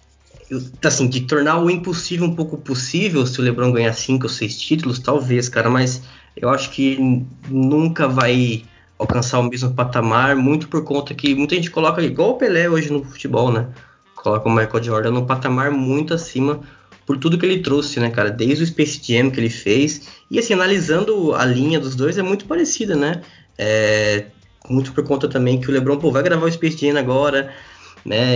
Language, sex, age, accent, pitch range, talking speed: Portuguese, male, 20-39, Brazilian, 115-150 Hz, 195 wpm